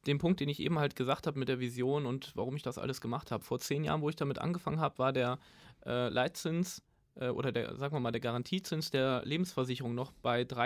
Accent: German